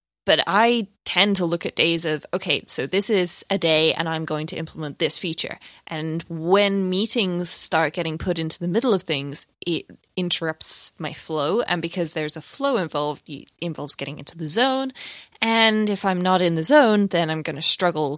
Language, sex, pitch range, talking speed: English, female, 155-180 Hz, 200 wpm